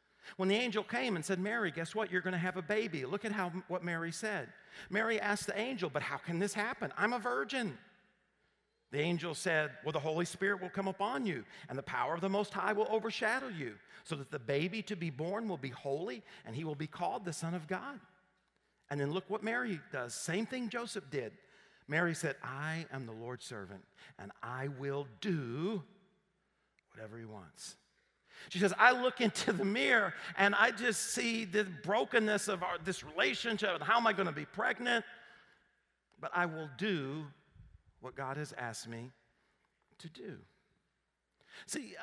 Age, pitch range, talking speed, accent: 50-69, 150-210 Hz, 190 wpm, American